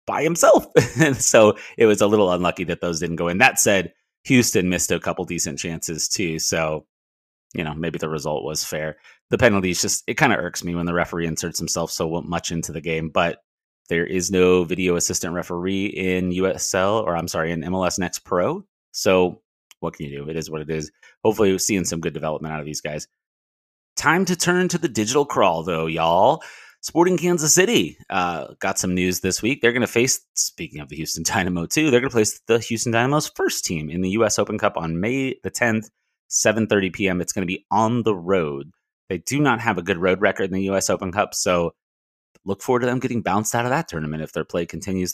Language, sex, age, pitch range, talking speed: English, male, 30-49, 80-110 Hz, 225 wpm